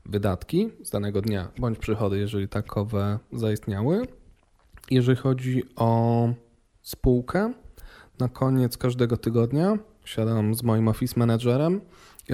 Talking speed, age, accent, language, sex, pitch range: 110 wpm, 20-39, native, Polish, male, 110-130 Hz